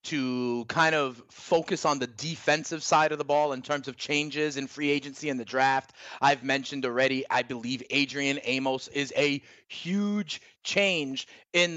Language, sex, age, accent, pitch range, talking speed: English, male, 30-49, American, 145-175 Hz, 170 wpm